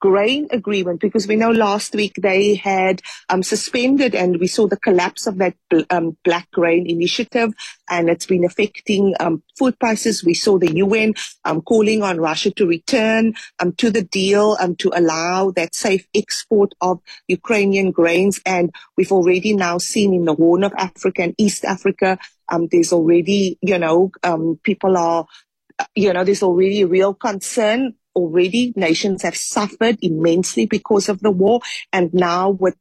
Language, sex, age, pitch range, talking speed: English, female, 40-59, 180-220 Hz, 170 wpm